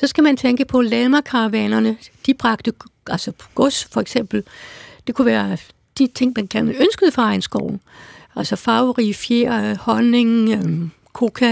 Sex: female